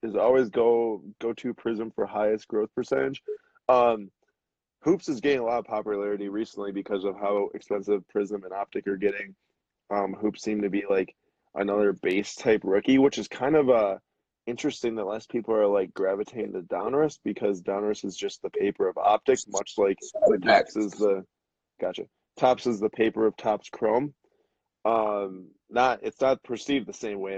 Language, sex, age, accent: English, male, 20-39, American